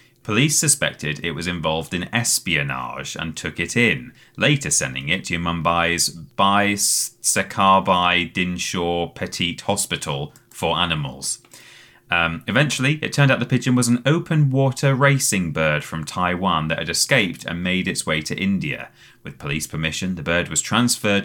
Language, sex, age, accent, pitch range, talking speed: English, male, 30-49, British, 85-115 Hz, 155 wpm